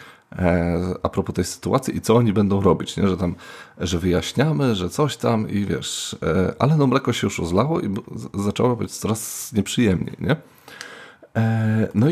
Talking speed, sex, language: 160 wpm, male, Polish